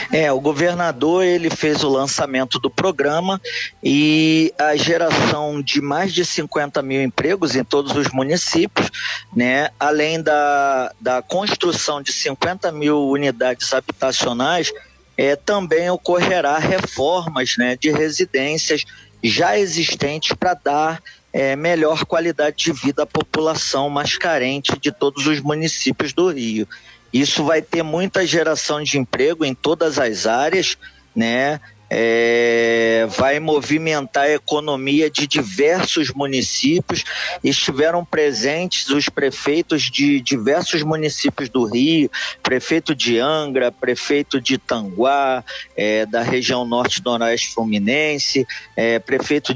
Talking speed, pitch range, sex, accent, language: 120 wpm, 130-160 Hz, male, Brazilian, Portuguese